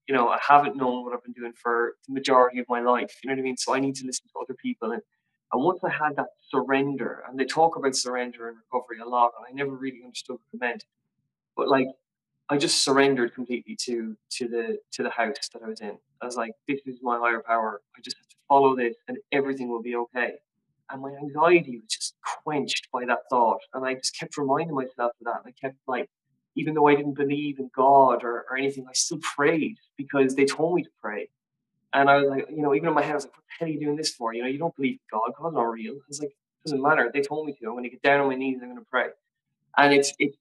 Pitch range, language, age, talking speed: 125-145 Hz, English, 20-39, 270 wpm